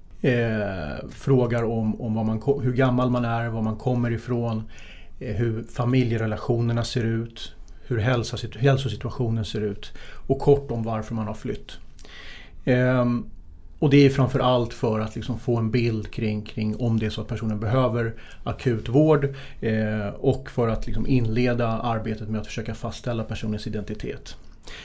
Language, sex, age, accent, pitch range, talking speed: Swedish, male, 30-49, native, 110-130 Hz, 155 wpm